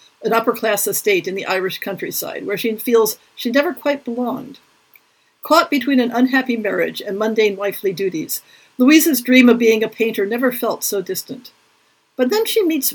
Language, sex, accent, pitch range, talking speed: English, female, American, 200-250 Hz, 170 wpm